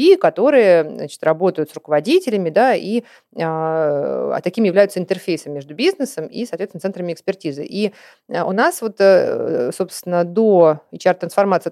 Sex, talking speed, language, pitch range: female, 130 wpm, Russian, 165-210 Hz